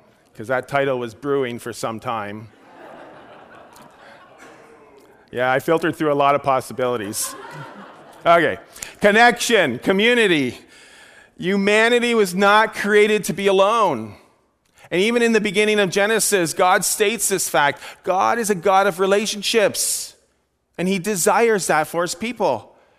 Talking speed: 130 wpm